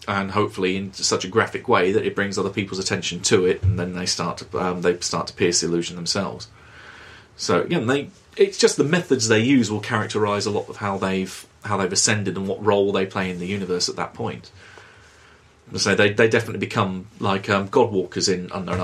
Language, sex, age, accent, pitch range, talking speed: English, male, 30-49, British, 95-120 Hz, 225 wpm